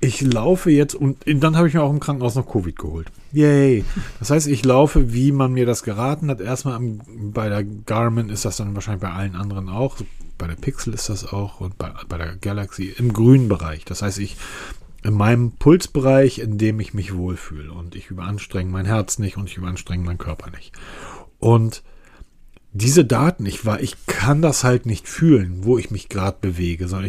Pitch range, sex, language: 100-140 Hz, male, German